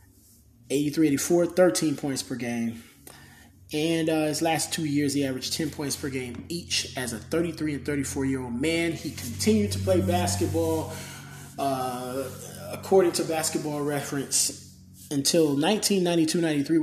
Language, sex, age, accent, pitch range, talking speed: English, male, 20-39, American, 120-160 Hz, 130 wpm